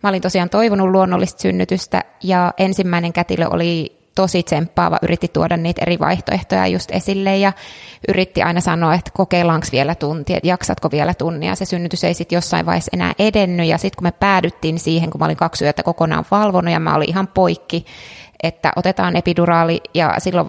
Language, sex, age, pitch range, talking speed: Finnish, female, 20-39, 165-185 Hz, 185 wpm